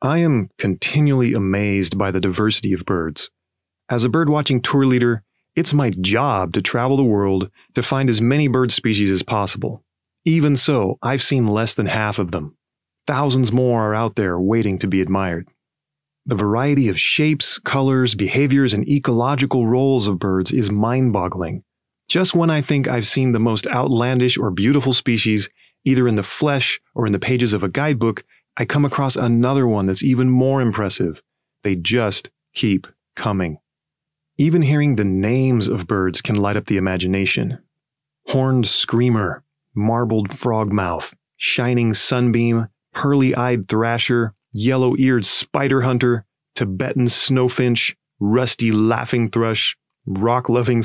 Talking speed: 145 wpm